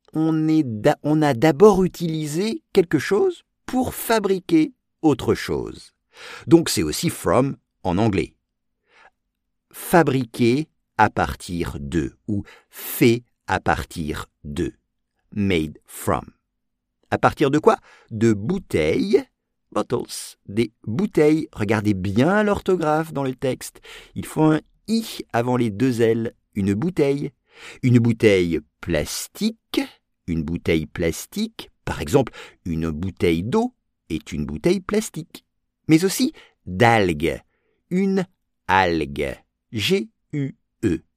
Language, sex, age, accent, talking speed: English, male, 50-69, French, 110 wpm